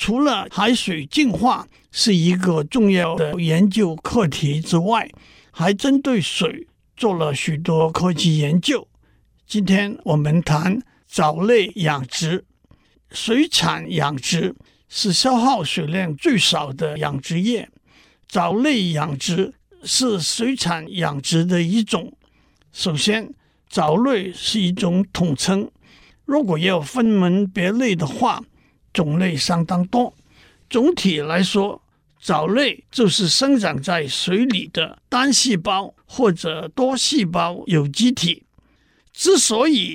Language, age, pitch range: Chinese, 60-79, 170-235 Hz